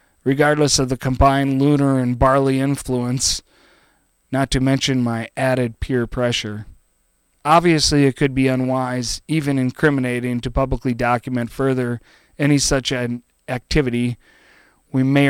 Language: English